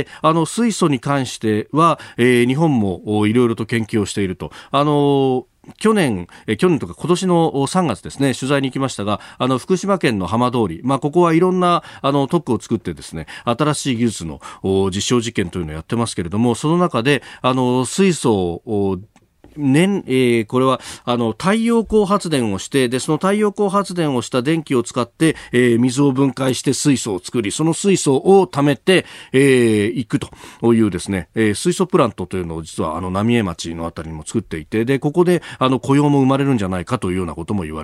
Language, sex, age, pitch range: Japanese, male, 40-59, 100-145 Hz